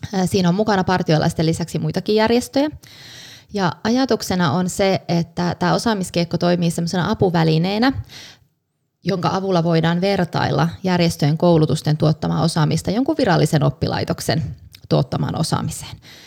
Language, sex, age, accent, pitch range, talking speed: Finnish, female, 20-39, native, 155-185 Hz, 105 wpm